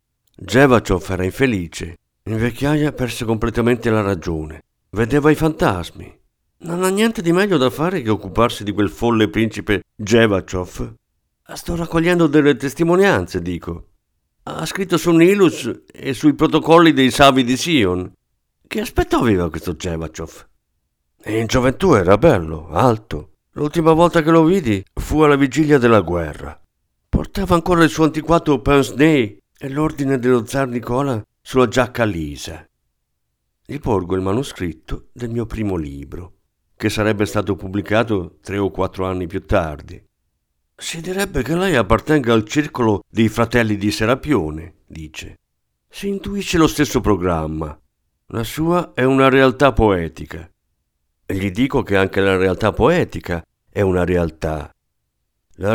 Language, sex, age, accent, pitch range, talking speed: Italian, male, 50-69, native, 90-145 Hz, 140 wpm